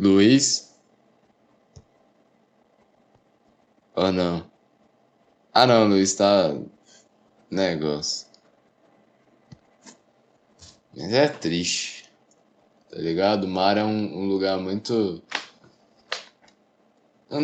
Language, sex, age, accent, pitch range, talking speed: Portuguese, male, 10-29, Brazilian, 100-135 Hz, 70 wpm